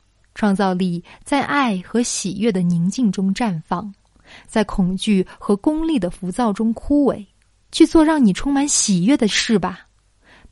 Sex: female